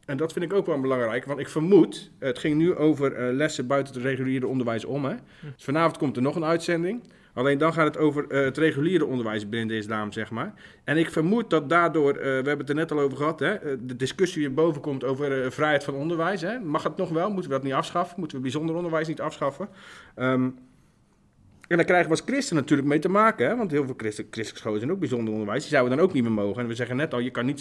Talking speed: 265 wpm